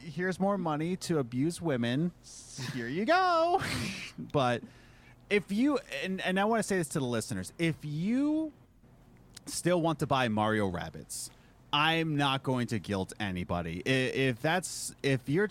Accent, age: American, 30-49